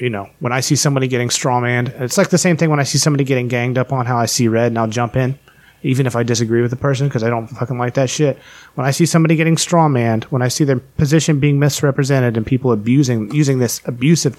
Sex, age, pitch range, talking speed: male, 30-49, 120-155 Hz, 265 wpm